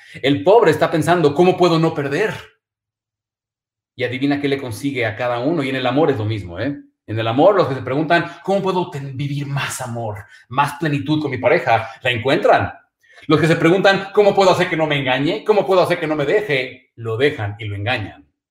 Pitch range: 115-145 Hz